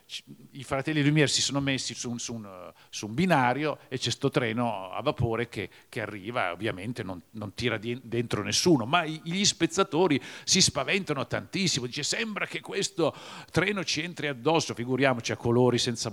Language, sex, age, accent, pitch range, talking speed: Italian, male, 50-69, native, 115-150 Hz, 170 wpm